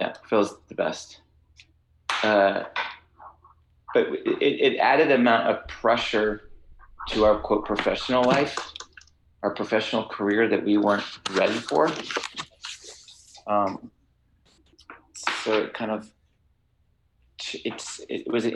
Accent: American